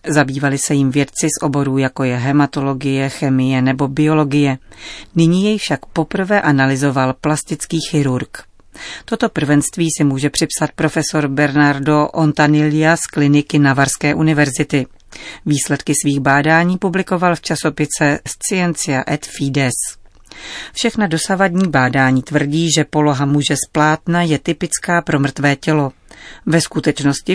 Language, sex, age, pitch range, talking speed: Czech, female, 40-59, 140-165 Hz, 120 wpm